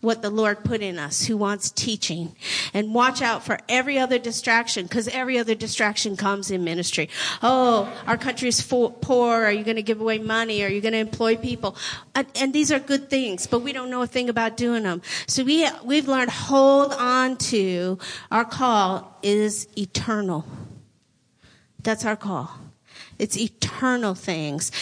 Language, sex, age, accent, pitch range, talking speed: English, female, 50-69, American, 200-255 Hz, 175 wpm